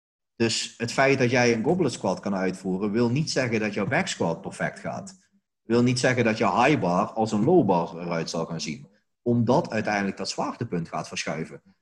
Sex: male